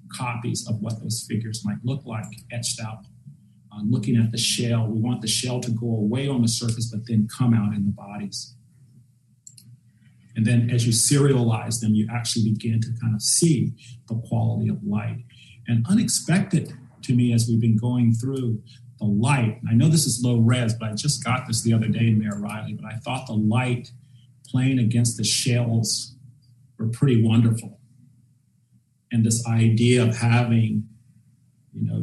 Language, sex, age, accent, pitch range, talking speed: English, male, 40-59, American, 110-125 Hz, 180 wpm